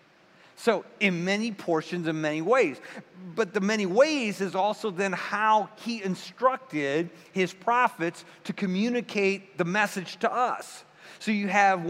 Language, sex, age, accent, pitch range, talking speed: English, male, 50-69, American, 170-220 Hz, 140 wpm